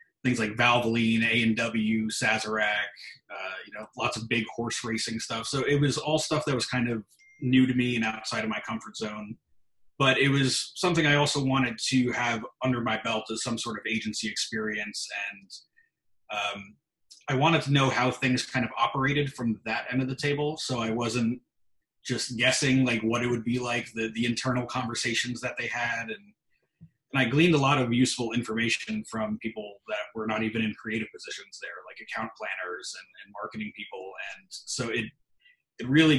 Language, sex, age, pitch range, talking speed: English, male, 30-49, 110-135 Hz, 190 wpm